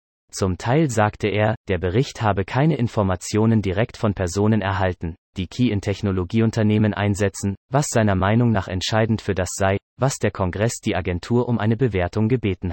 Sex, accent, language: male, German, German